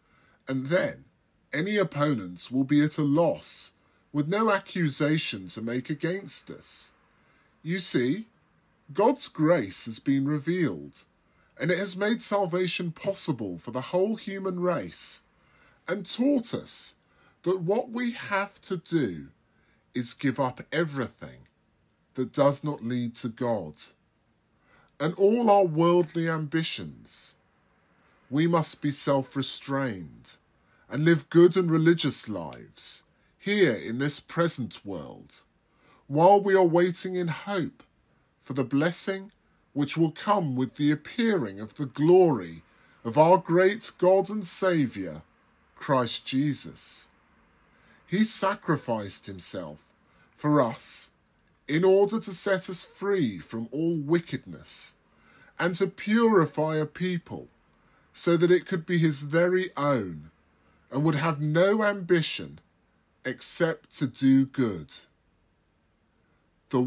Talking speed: 120 wpm